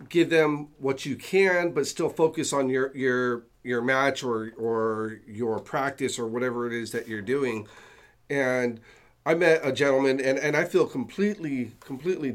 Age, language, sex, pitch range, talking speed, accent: 40-59, English, male, 120-145 Hz, 170 wpm, American